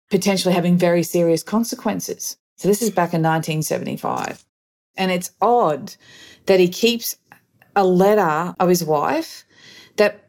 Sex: female